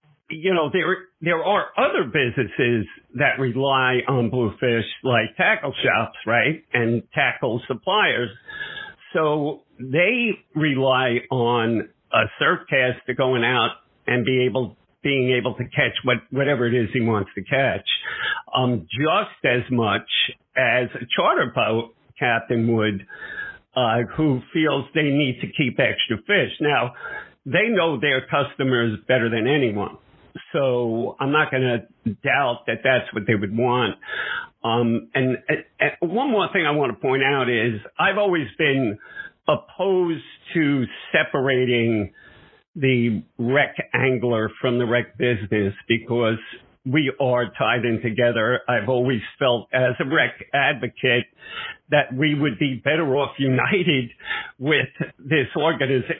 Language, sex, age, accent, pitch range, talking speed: English, male, 50-69, American, 120-145 Hz, 135 wpm